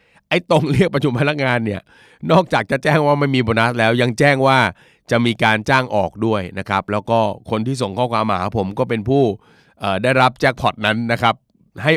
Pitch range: 105-130 Hz